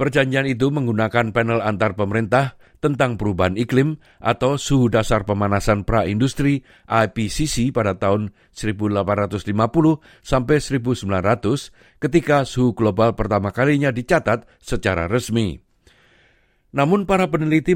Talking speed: 100 wpm